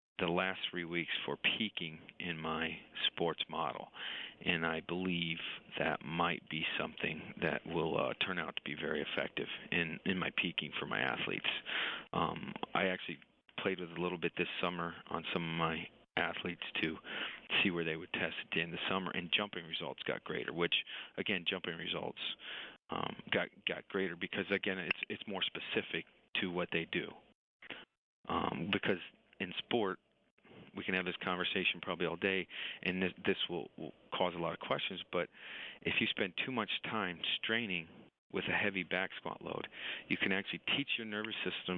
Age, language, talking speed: 40-59, English, 180 wpm